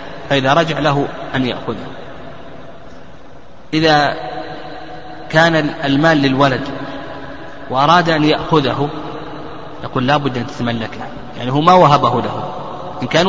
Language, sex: Arabic, male